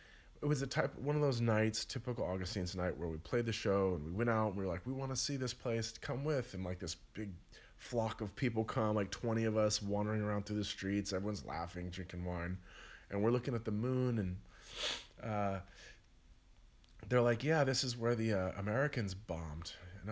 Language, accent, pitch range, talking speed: English, American, 90-115 Hz, 220 wpm